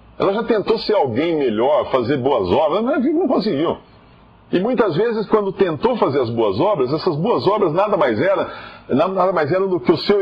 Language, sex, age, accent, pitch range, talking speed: Portuguese, male, 50-69, Brazilian, 115-180 Hz, 190 wpm